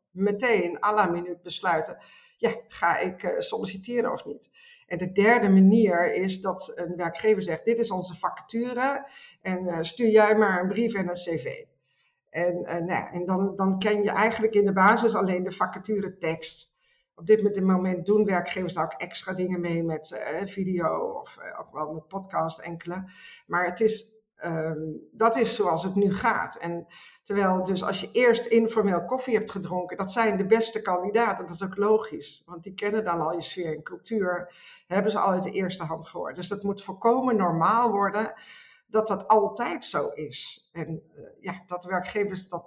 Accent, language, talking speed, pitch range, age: Dutch, Dutch, 185 wpm, 175-215 Hz, 50-69